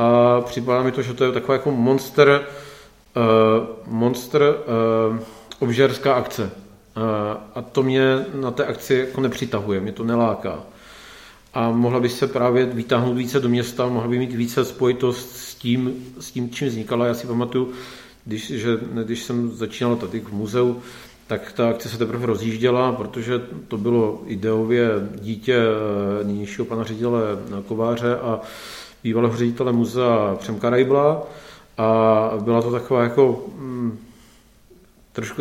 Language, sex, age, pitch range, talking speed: Czech, male, 40-59, 115-130 Hz, 150 wpm